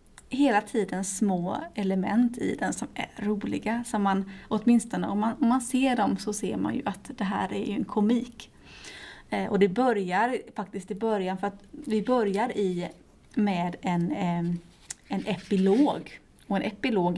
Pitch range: 190-235 Hz